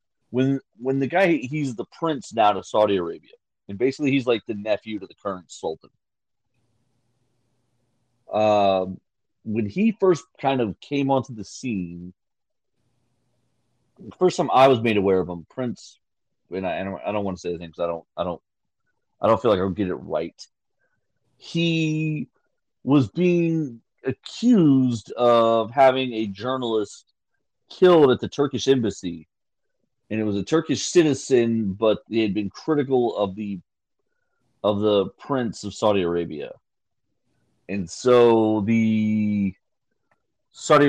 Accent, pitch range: American, 100-135 Hz